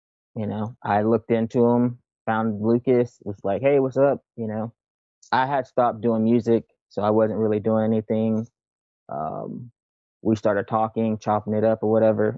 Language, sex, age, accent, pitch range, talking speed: English, male, 20-39, American, 105-115 Hz, 170 wpm